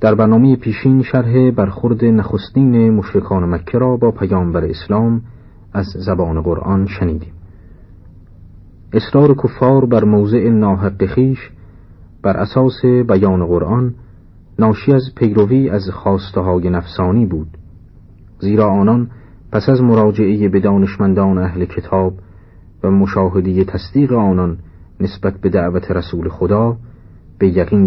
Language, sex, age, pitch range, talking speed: Persian, male, 50-69, 90-115 Hz, 115 wpm